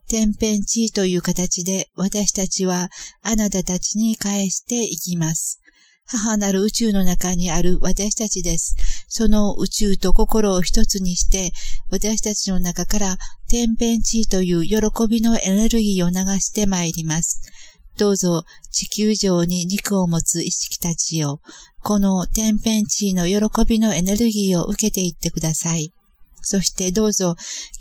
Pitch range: 180-215 Hz